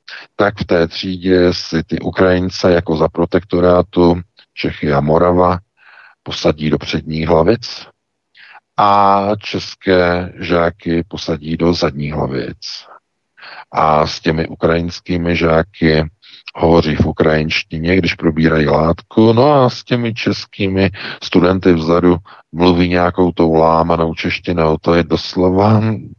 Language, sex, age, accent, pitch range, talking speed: Czech, male, 50-69, native, 80-90 Hz, 115 wpm